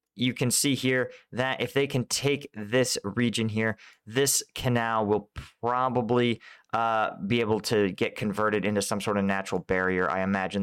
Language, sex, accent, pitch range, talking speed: English, male, American, 105-130 Hz, 170 wpm